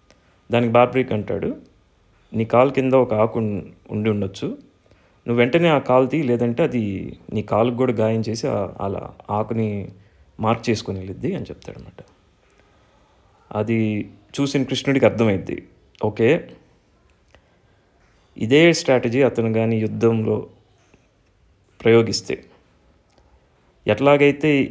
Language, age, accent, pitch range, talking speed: Telugu, 30-49, native, 105-125 Hz, 100 wpm